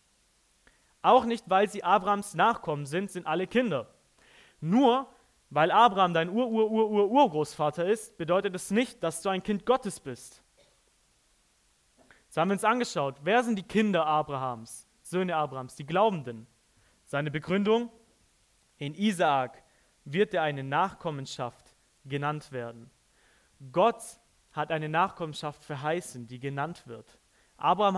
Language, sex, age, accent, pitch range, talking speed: German, male, 30-49, German, 130-185 Hz, 135 wpm